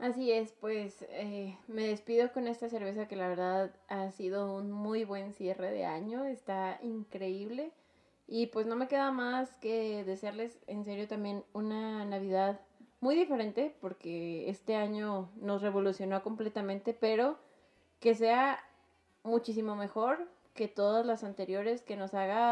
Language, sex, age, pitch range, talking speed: Spanish, female, 20-39, 195-230 Hz, 145 wpm